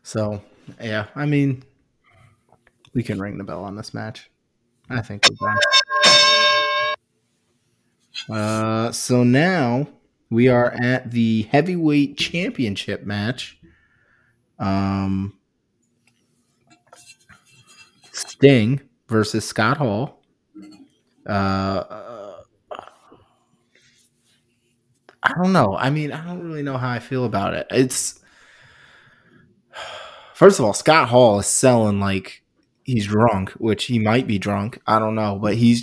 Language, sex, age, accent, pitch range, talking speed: English, male, 20-39, American, 105-135 Hz, 115 wpm